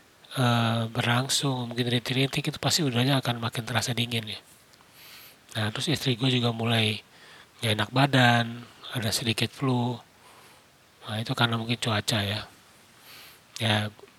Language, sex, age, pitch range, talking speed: Indonesian, male, 30-49, 115-135 Hz, 125 wpm